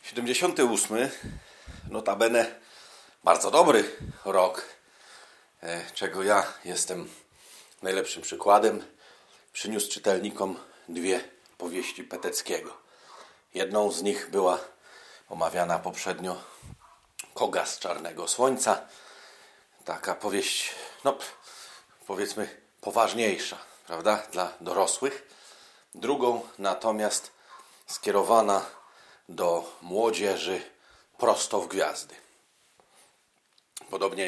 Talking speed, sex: 75 wpm, male